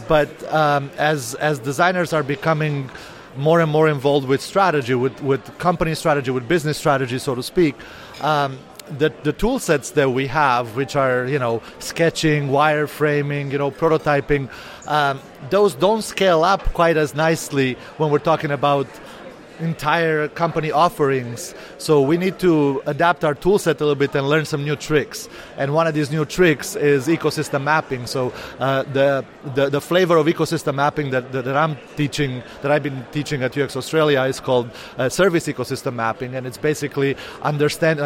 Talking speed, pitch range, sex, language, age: 175 wpm, 140-155 Hz, male, English, 30-49